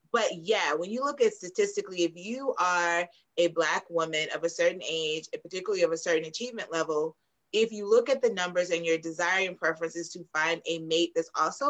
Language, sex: English, female